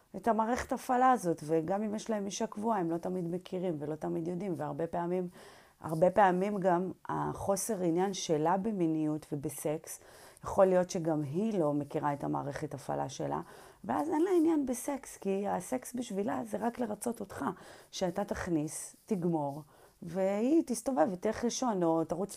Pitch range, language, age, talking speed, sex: 155-200 Hz, Hebrew, 30-49, 160 wpm, female